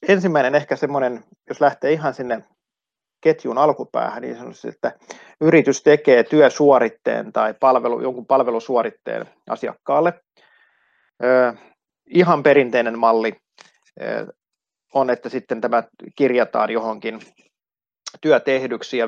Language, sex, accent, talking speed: Finnish, male, native, 100 wpm